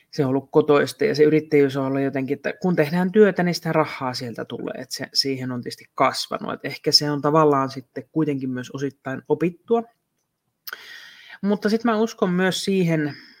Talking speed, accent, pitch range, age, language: 185 wpm, native, 135-165 Hz, 30-49, Finnish